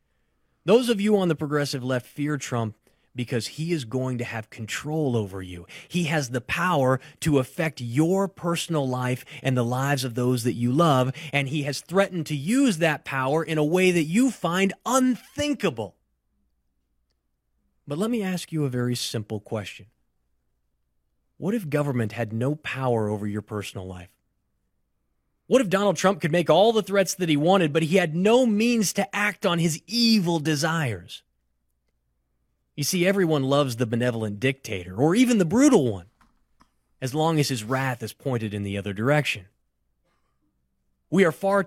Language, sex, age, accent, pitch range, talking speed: English, male, 30-49, American, 110-170 Hz, 170 wpm